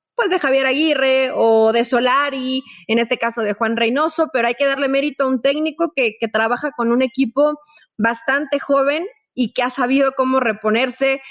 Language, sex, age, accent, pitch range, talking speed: Spanish, female, 30-49, Mexican, 225-305 Hz, 185 wpm